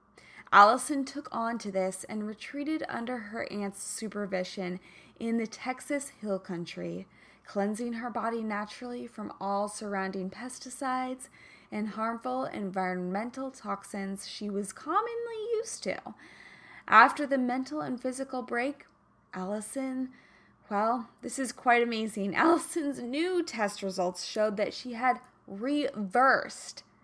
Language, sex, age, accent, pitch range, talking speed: English, female, 20-39, American, 205-275 Hz, 120 wpm